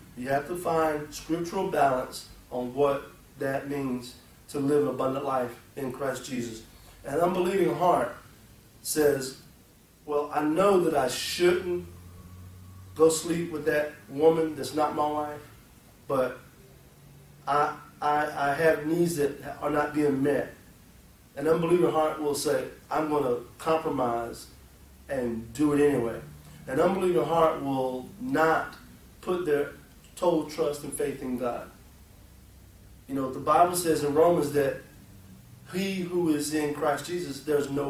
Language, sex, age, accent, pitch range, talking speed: English, male, 40-59, American, 125-160 Hz, 140 wpm